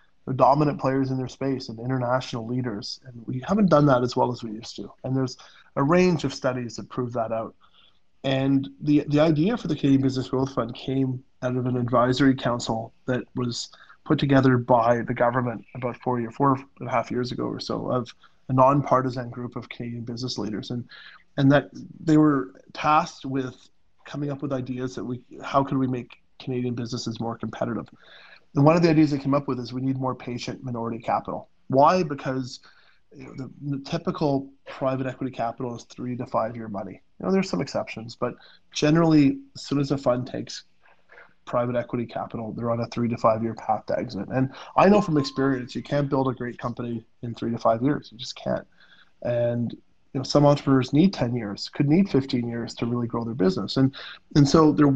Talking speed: 205 wpm